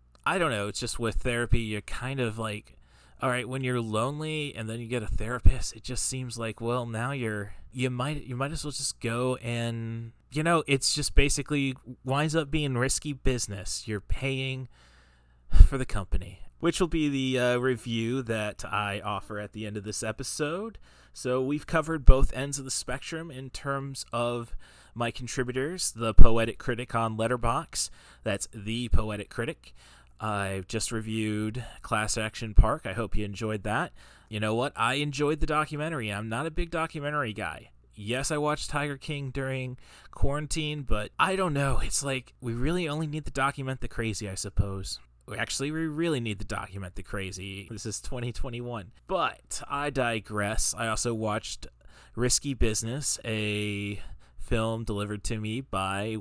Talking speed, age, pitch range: 175 wpm, 30-49, 105-135 Hz